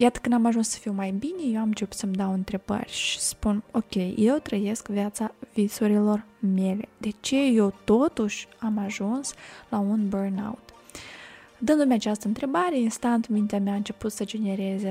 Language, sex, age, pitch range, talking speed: Romanian, female, 20-39, 205-240 Hz, 165 wpm